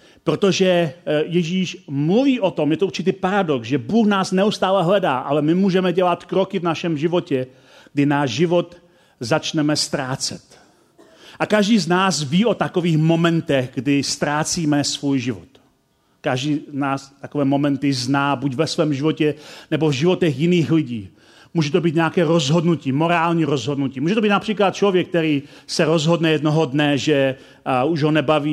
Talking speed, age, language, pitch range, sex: 160 wpm, 40-59, Czech, 145-185 Hz, male